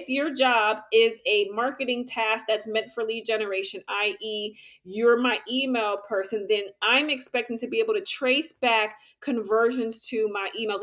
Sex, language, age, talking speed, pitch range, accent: female, English, 30-49, 165 wpm, 220-280 Hz, American